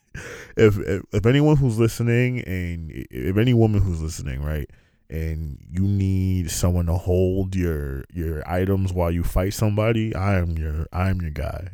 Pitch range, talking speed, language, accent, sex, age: 90-130 Hz, 170 wpm, English, American, male, 20-39